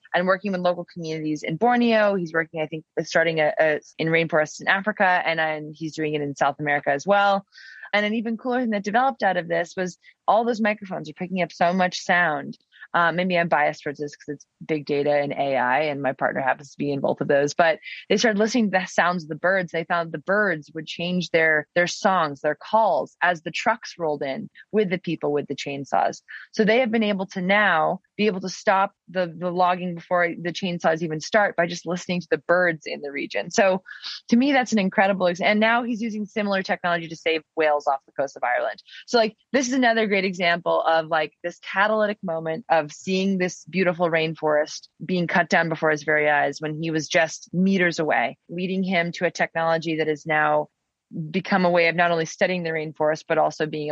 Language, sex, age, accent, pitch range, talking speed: English, female, 20-39, American, 155-195 Hz, 225 wpm